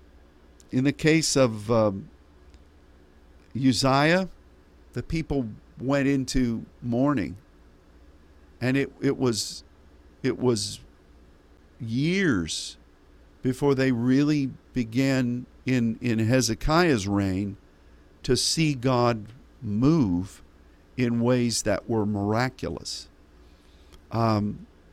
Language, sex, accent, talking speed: English, male, American, 85 wpm